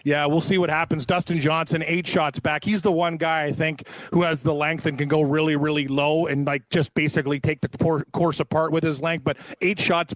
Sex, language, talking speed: male, English, 235 wpm